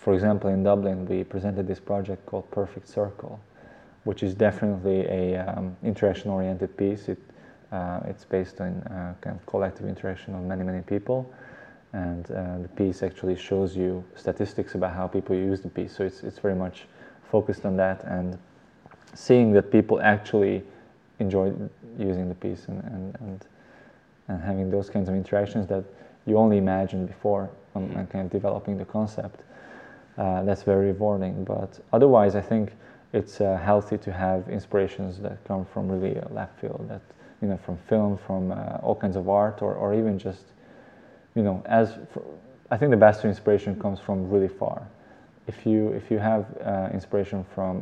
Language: English